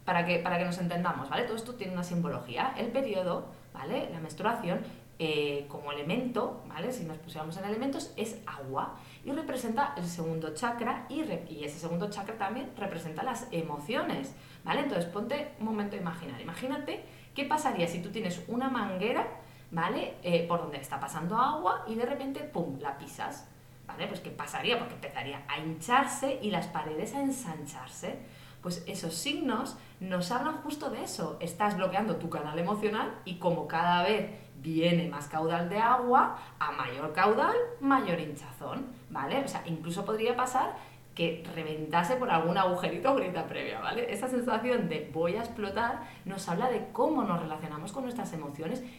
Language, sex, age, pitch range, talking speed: Spanish, female, 20-39, 160-245 Hz, 175 wpm